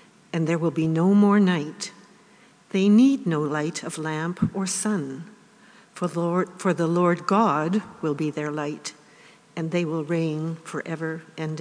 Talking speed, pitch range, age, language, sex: 155 wpm, 155-220 Hz, 60-79, English, female